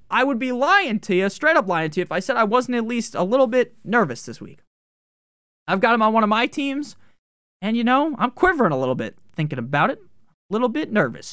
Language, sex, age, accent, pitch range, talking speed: English, male, 20-39, American, 175-245 Hz, 250 wpm